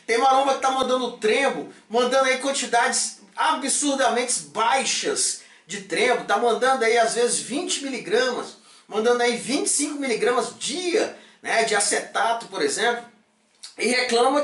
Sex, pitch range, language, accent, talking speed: male, 225-280 Hz, Portuguese, Brazilian, 135 wpm